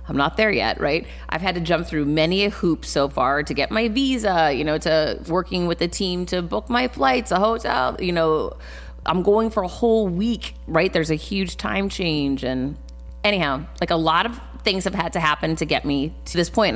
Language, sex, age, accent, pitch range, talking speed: English, female, 30-49, American, 145-195 Hz, 225 wpm